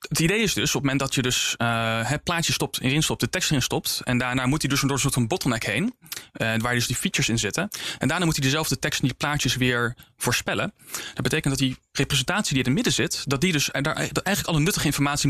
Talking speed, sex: 270 wpm, male